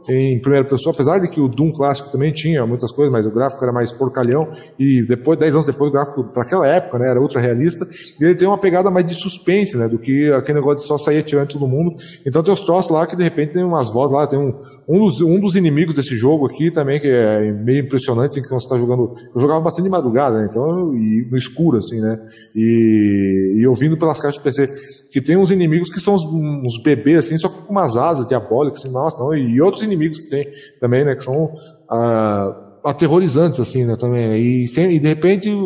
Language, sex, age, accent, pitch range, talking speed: Portuguese, male, 20-39, Brazilian, 125-165 Hz, 235 wpm